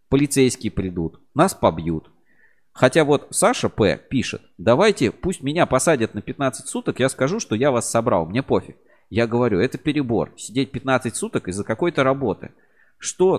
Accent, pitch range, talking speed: native, 100-150 Hz, 155 wpm